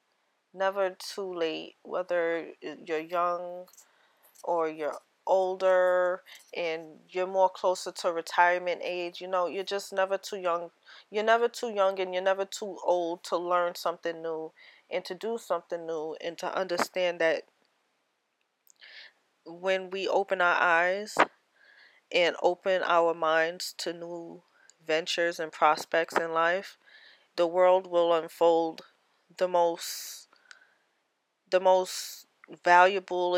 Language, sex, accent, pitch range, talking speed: English, female, American, 170-190 Hz, 125 wpm